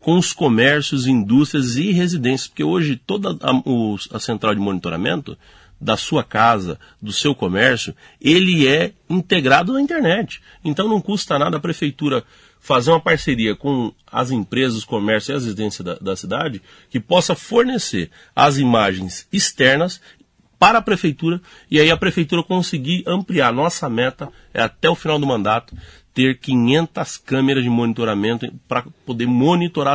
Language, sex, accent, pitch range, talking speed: Portuguese, male, Brazilian, 110-160 Hz, 155 wpm